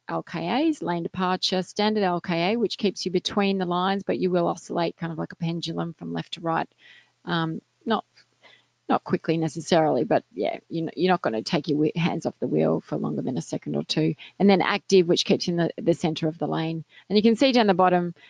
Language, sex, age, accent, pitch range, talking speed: English, female, 30-49, Australian, 170-190 Hz, 225 wpm